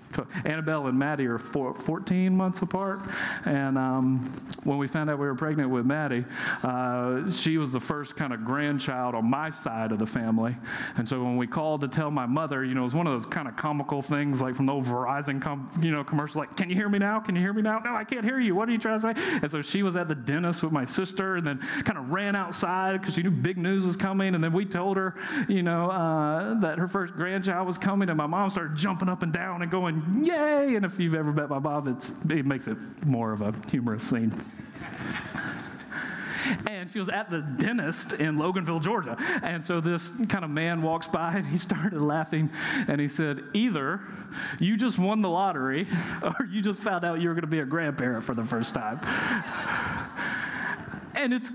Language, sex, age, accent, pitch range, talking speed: English, male, 40-59, American, 145-195 Hz, 225 wpm